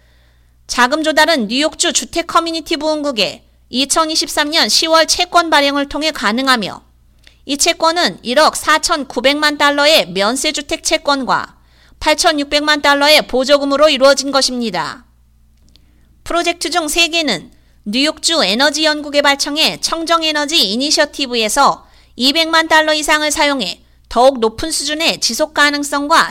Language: Korean